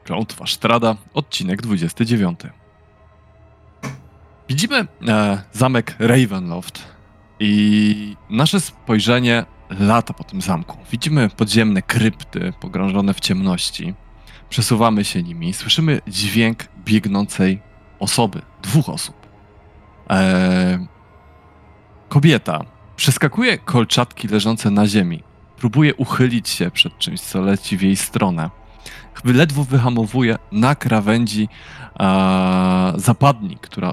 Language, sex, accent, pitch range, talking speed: Polish, male, native, 100-125 Hz, 95 wpm